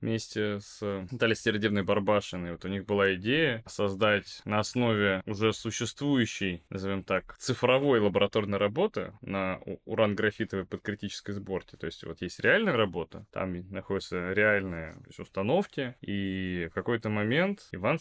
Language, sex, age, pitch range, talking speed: Russian, male, 20-39, 95-115 Hz, 130 wpm